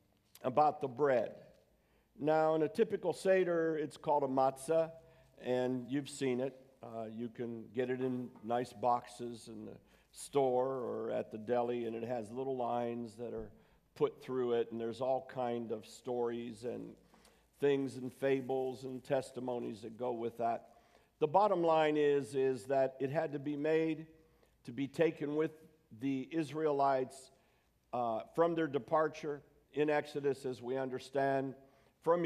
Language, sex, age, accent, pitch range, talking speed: English, male, 50-69, American, 125-155 Hz, 155 wpm